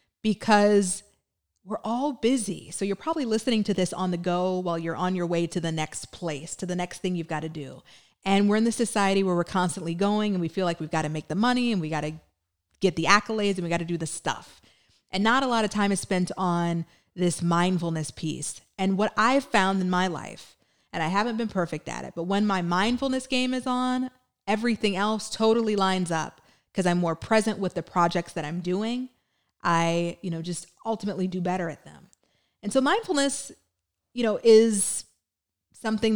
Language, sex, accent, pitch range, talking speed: English, female, American, 170-220 Hz, 210 wpm